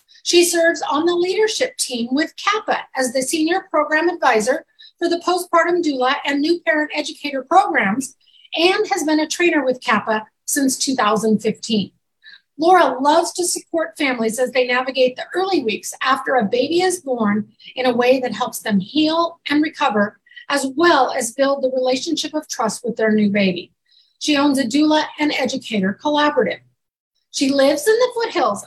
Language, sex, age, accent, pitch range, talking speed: English, female, 40-59, American, 250-330 Hz, 165 wpm